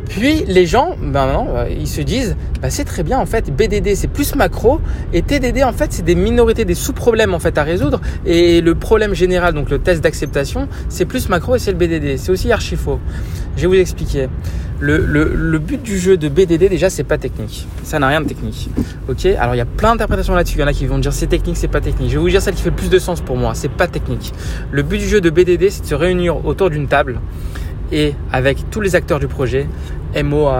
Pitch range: 125-180 Hz